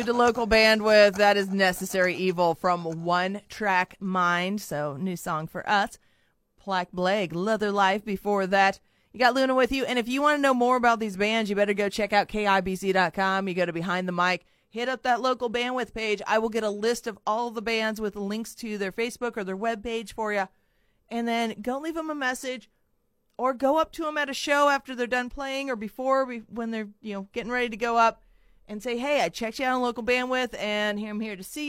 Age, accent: 30-49, American